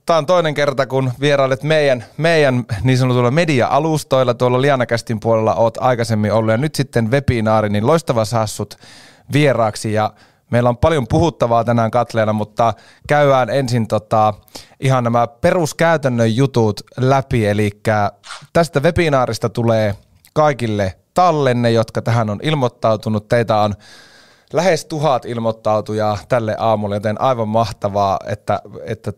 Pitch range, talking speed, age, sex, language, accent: 110-135 Hz, 130 wpm, 30-49, male, Finnish, native